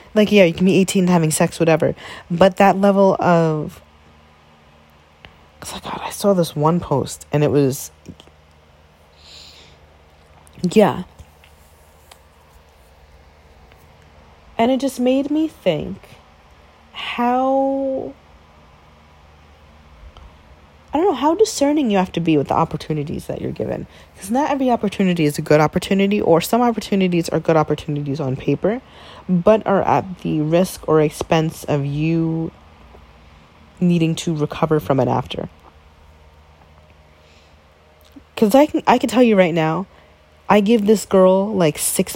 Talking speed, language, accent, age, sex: 135 wpm, English, American, 30-49, female